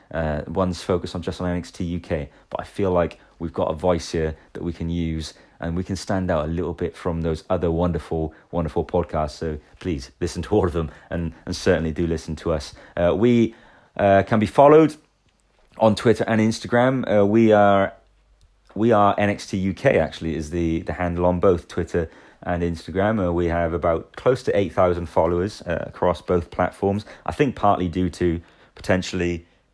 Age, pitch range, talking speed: 30-49, 85-95 Hz, 190 wpm